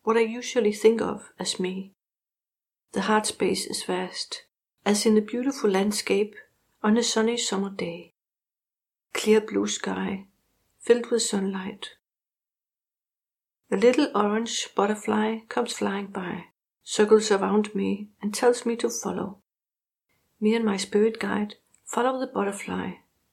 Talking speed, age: 130 wpm, 60-79